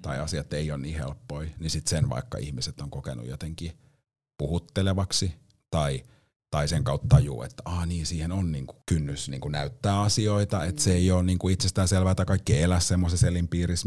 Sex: male